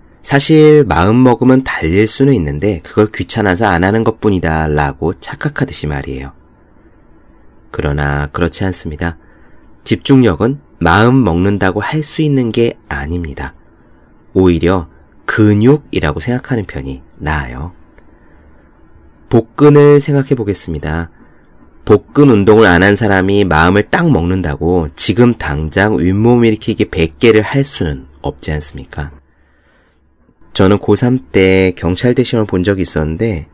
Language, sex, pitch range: Korean, male, 80-120 Hz